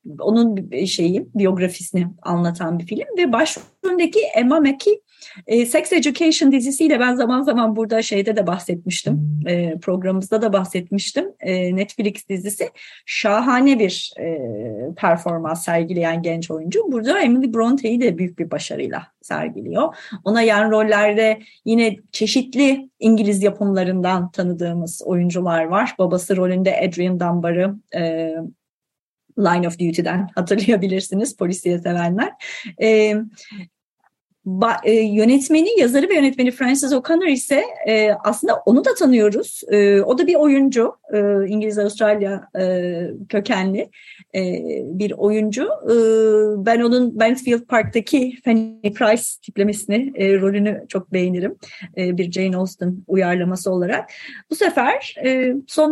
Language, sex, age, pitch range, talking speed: Turkish, female, 30-49, 185-250 Hz, 120 wpm